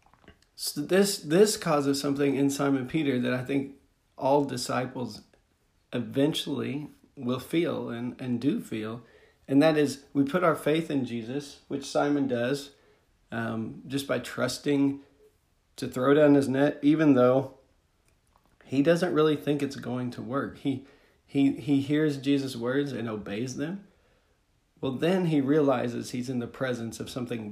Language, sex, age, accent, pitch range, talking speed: English, male, 40-59, American, 120-145 Hz, 155 wpm